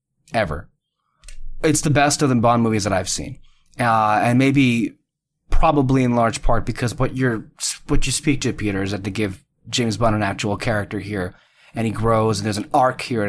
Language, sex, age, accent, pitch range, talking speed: English, male, 20-39, American, 105-130 Hz, 200 wpm